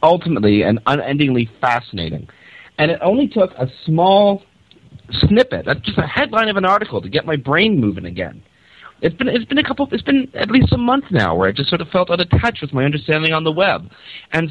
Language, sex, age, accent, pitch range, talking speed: English, male, 40-59, American, 110-170 Hz, 205 wpm